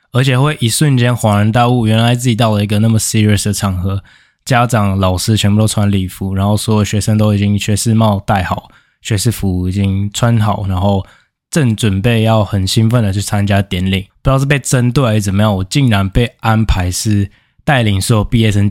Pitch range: 100-120 Hz